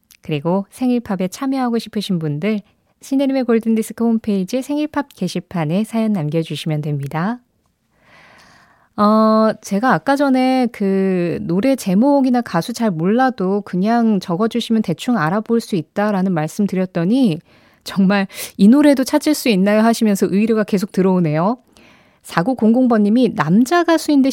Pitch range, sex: 185-250 Hz, female